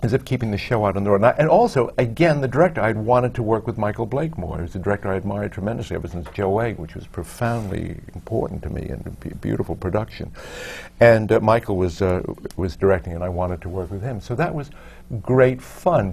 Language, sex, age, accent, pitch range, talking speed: English, male, 60-79, American, 90-115 Hz, 240 wpm